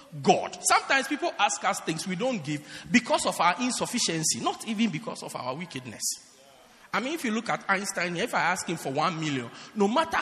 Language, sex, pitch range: English, male, 175-295 Hz